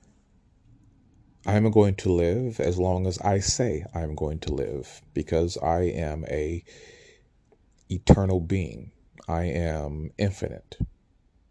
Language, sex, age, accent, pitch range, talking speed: English, male, 40-59, American, 80-100 Hz, 115 wpm